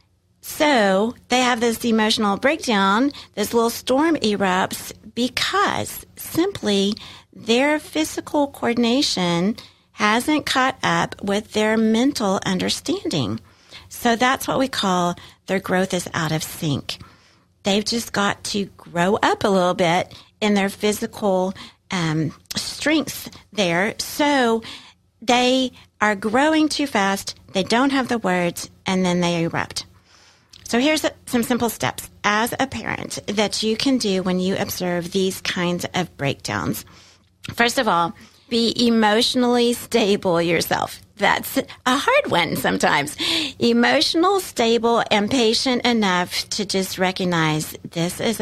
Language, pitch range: English, 180-245 Hz